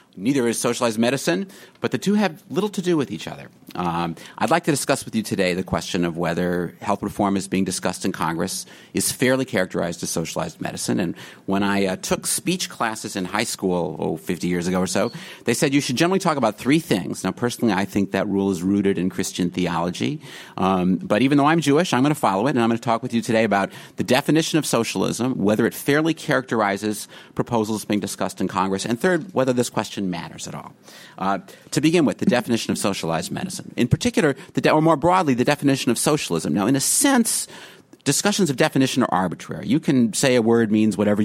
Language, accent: English, American